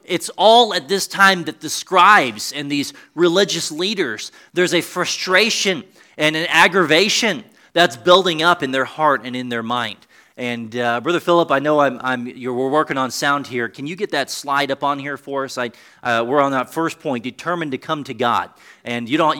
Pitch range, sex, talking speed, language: 130-175 Hz, male, 205 wpm, English